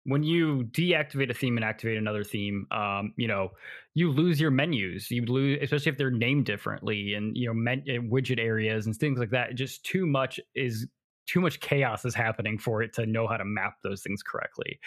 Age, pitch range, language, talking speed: 20-39, 115-140 Hz, English, 215 wpm